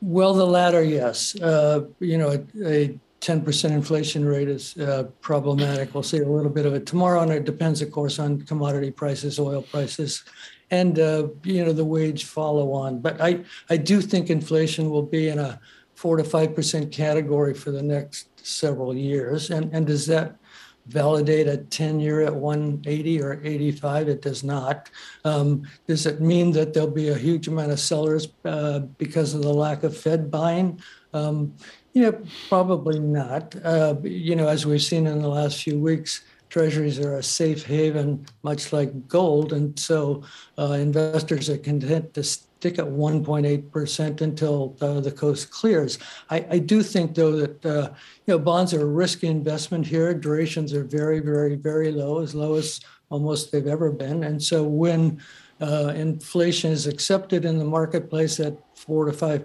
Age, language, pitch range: 60-79, English, 145-165 Hz